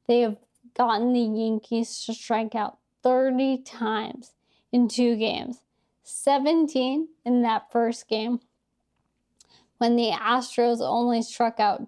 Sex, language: female, English